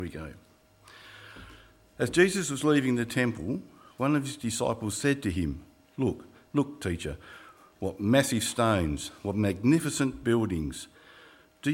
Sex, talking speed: male, 130 wpm